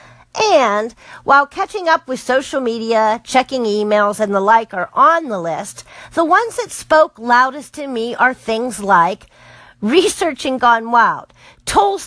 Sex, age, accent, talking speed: female, 50-69, American, 150 wpm